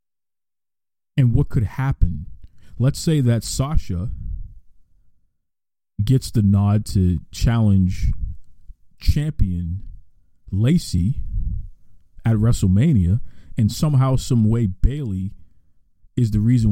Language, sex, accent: English, male, American